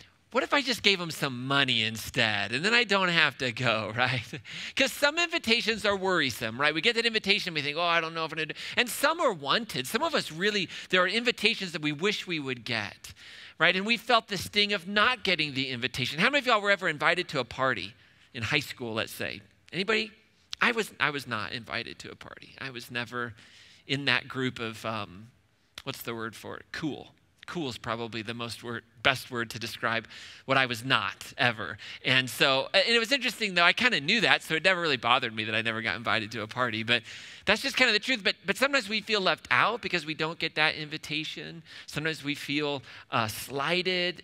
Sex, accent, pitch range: male, American, 120-195 Hz